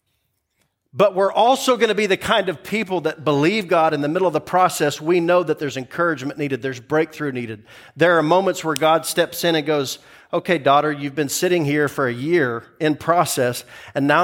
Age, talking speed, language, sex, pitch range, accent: 40-59, 210 wpm, English, male, 130-170 Hz, American